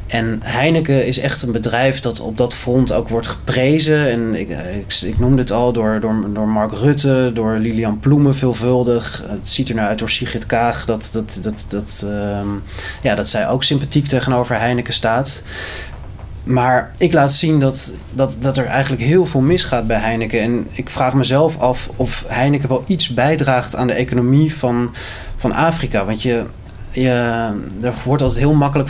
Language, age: Dutch, 20-39